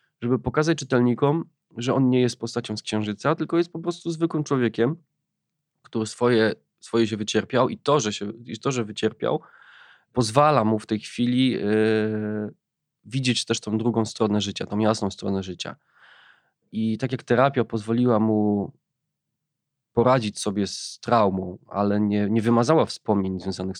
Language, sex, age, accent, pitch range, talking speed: Polish, male, 20-39, native, 105-125 Hz, 145 wpm